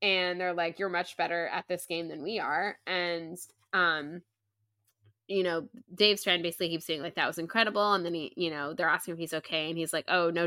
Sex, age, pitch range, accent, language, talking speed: female, 10-29, 160-180 Hz, American, English, 230 wpm